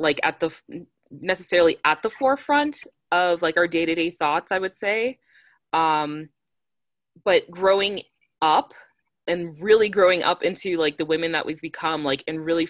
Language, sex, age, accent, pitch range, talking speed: English, female, 20-39, American, 155-200 Hz, 155 wpm